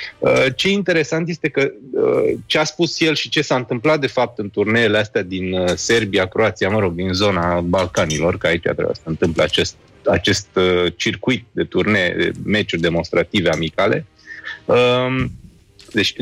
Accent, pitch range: native, 100-140 Hz